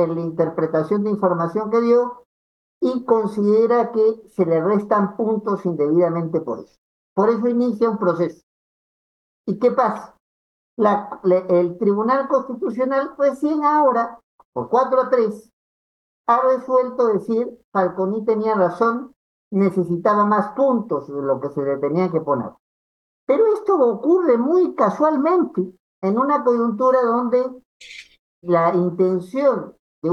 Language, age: Spanish, 50-69